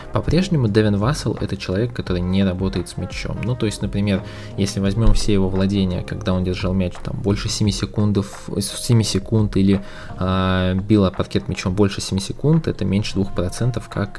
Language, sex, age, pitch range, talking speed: Russian, male, 20-39, 95-120 Hz, 175 wpm